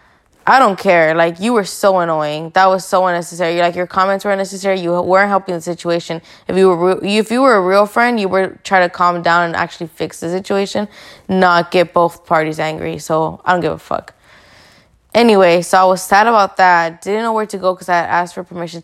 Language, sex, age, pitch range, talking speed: English, female, 20-39, 165-195 Hz, 230 wpm